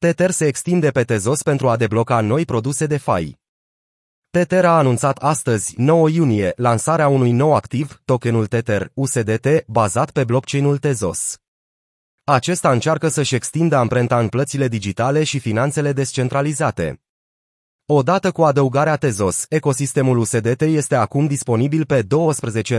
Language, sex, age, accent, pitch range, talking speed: Romanian, male, 30-49, native, 115-150 Hz, 135 wpm